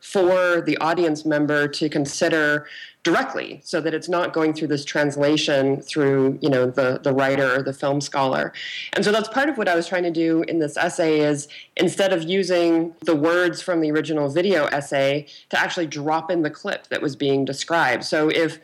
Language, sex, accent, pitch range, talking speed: English, female, American, 145-175 Hz, 200 wpm